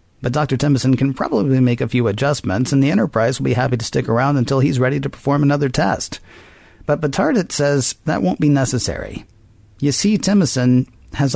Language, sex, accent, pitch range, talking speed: English, male, American, 115-140 Hz, 190 wpm